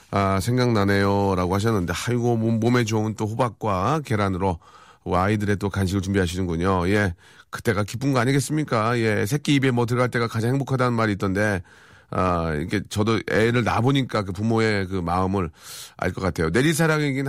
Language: Korean